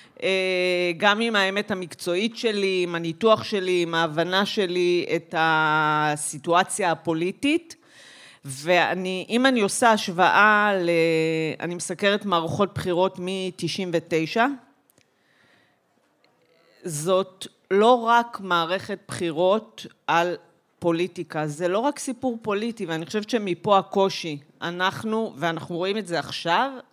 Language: Hebrew